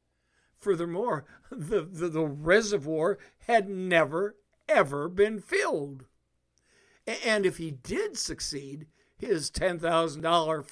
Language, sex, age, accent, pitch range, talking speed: English, male, 60-79, American, 140-200 Hz, 95 wpm